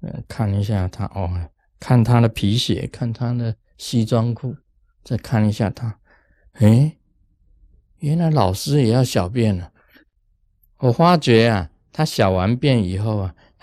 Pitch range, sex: 100-145 Hz, male